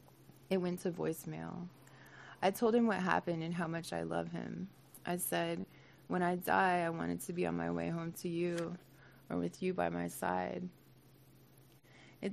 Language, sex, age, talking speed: English, female, 20-39, 180 wpm